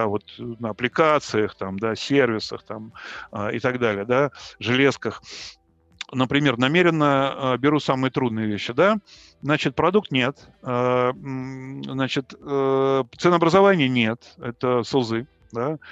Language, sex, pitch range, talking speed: Russian, male, 120-165 Hz, 120 wpm